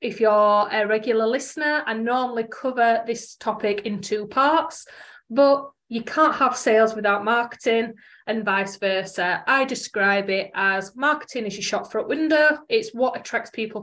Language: English